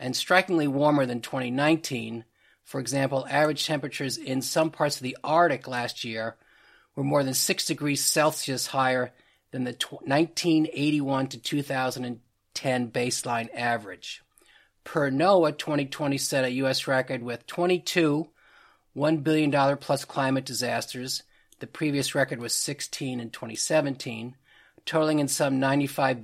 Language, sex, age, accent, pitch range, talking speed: English, male, 40-59, American, 125-150 Hz, 130 wpm